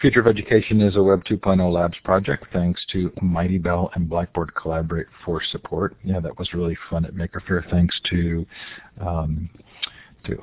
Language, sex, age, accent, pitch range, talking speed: English, male, 50-69, American, 90-105 Hz, 165 wpm